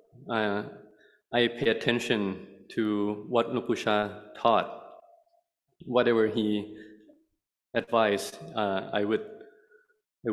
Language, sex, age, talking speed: English, male, 20-39, 85 wpm